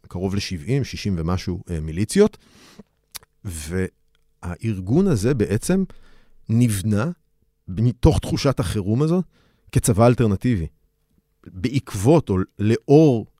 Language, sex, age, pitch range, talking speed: Hebrew, male, 40-59, 90-120 Hz, 80 wpm